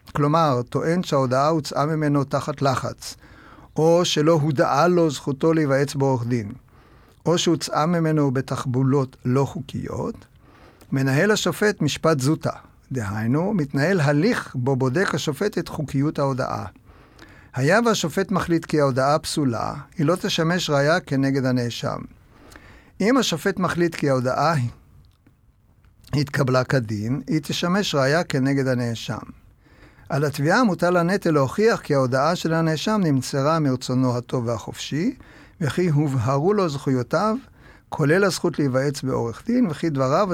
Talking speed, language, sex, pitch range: 125 wpm, Hebrew, male, 130-165 Hz